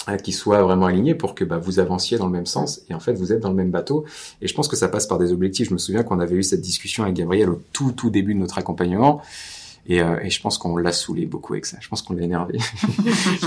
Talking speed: 285 wpm